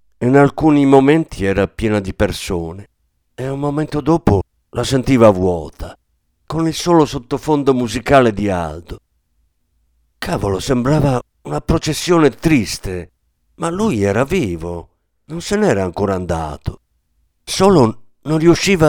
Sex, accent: male, native